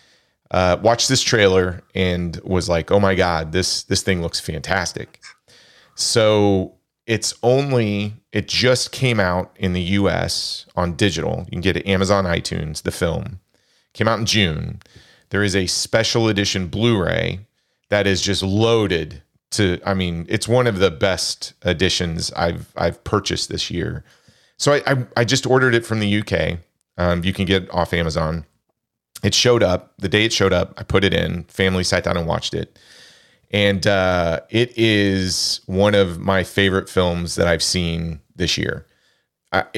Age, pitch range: 30-49, 90-110 Hz